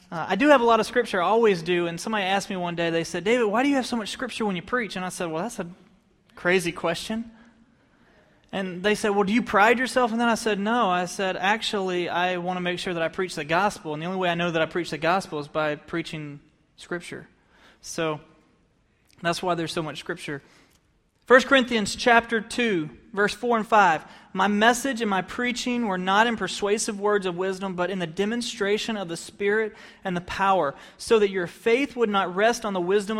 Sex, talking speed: male, 230 wpm